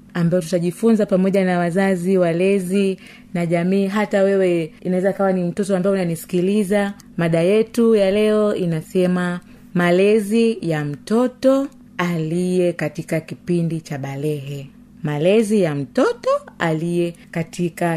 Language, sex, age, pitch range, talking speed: Swahili, female, 30-49, 165-225 Hz, 115 wpm